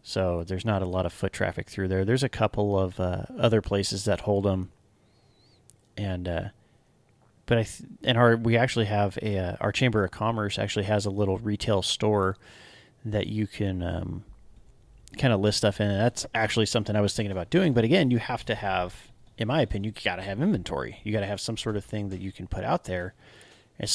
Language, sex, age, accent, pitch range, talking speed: English, male, 30-49, American, 95-115 Hz, 225 wpm